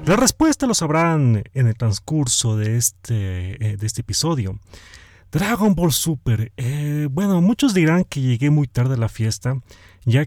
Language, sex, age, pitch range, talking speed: Spanish, male, 30-49, 105-155 Hz, 160 wpm